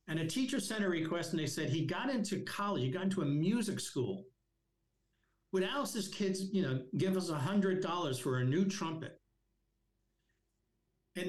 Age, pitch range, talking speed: 60-79, 125-180 Hz, 170 wpm